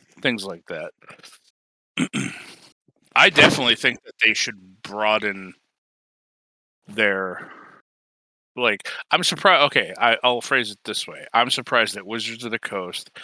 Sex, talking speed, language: male, 125 wpm, English